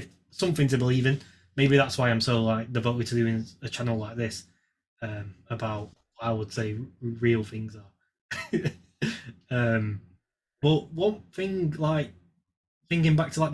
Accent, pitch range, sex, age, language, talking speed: British, 105-135 Hz, male, 20-39, English, 160 wpm